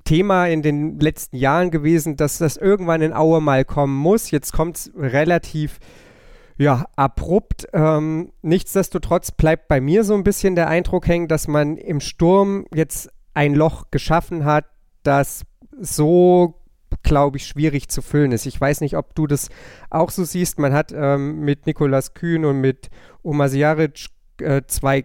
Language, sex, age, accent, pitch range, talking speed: German, male, 40-59, German, 140-165 Hz, 160 wpm